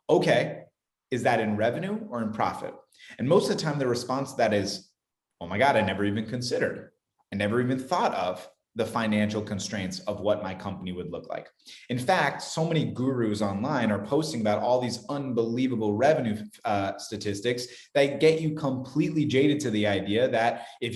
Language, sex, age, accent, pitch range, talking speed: English, male, 30-49, American, 100-135 Hz, 185 wpm